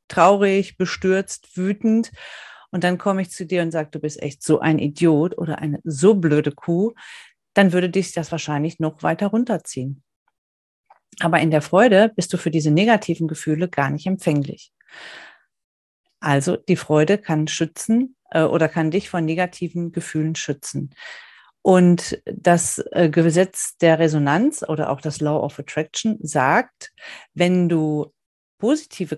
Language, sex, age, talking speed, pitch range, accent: German, female, 40-59, 145 wpm, 155-190 Hz, German